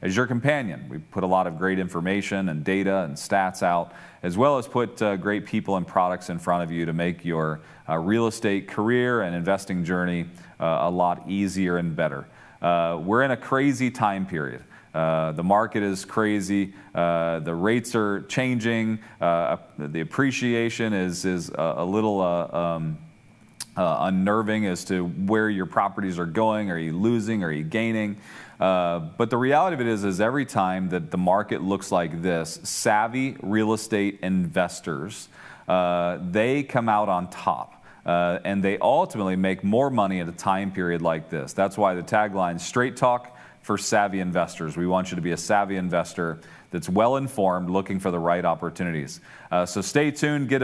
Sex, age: male, 40-59